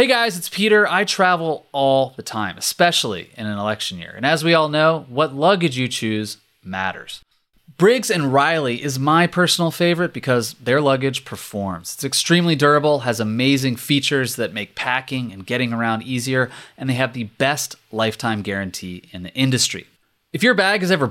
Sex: male